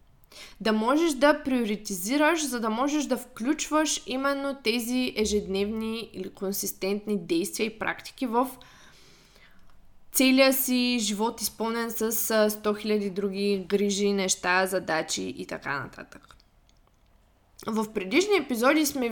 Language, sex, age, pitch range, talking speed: Bulgarian, female, 20-39, 210-265 Hz, 115 wpm